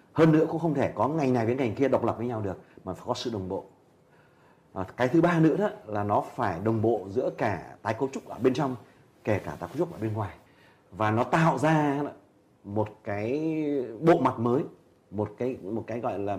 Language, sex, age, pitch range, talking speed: Vietnamese, male, 30-49, 105-135 Hz, 235 wpm